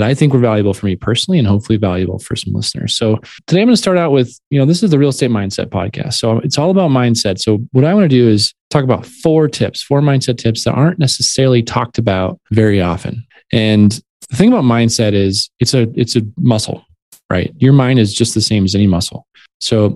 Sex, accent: male, American